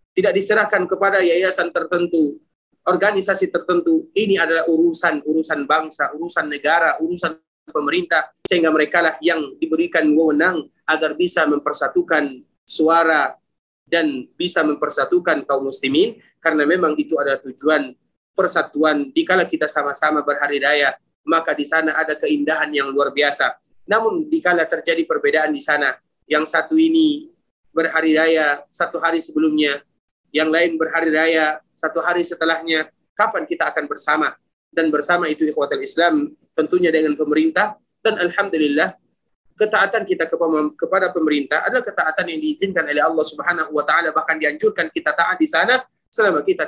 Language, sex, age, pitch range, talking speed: Indonesian, male, 30-49, 150-180 Hz, 135 wpm